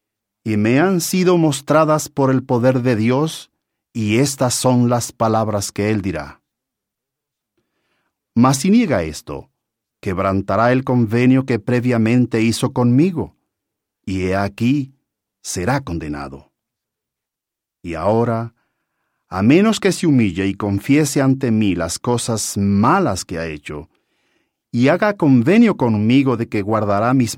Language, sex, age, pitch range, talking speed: English, male, 50-69, 100-140 Hz, 130 wpm